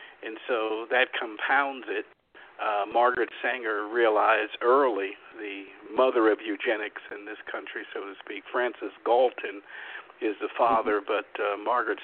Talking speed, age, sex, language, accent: 140 wpm, 50-69, male, English, American